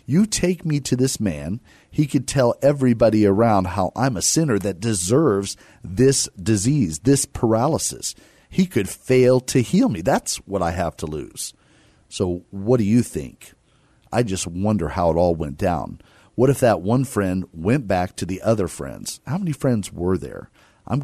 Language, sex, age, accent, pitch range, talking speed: English, male, 40-59, American, 90-125 Hz, 180 wpm